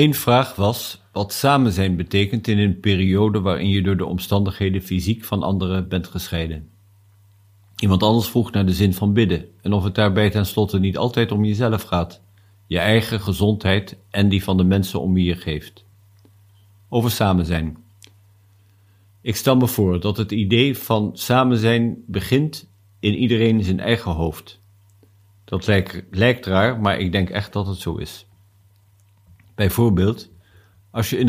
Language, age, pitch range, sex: Dutch, 50-69, 100-110 Hz, male